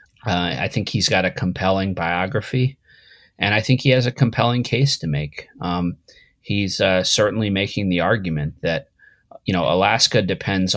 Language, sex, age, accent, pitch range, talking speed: English, male, 30-49, American, 85-105 Hz, 165 wpm